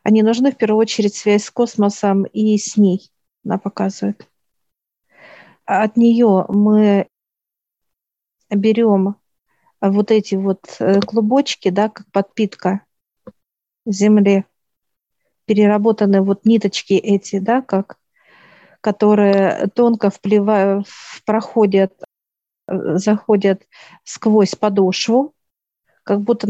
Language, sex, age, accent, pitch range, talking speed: Russian, female, 40-59, native, 200-220 Hz, 90 wpm